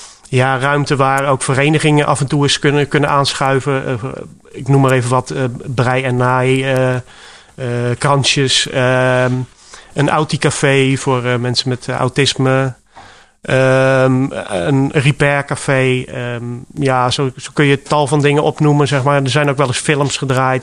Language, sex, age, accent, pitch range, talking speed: Dutch, male, 30-49, Dutch, 130-155 Hz, 155 wpm